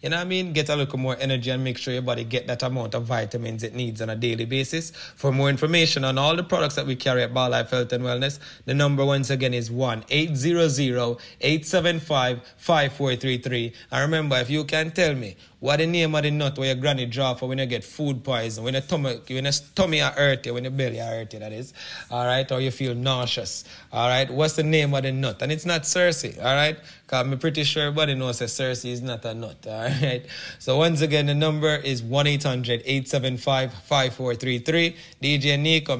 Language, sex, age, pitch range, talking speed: English, male, 30-49, 125-155 Hz, 215 wpm